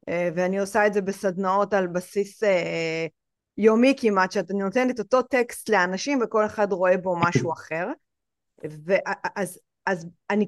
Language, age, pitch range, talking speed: Hebrew, 30-49, 180-225 Hz, 130 wpm